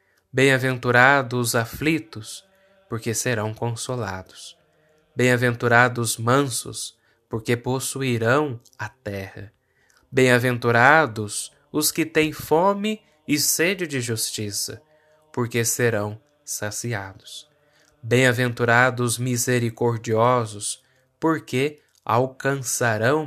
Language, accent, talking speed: Portuguese, Brazilian, 75 wpm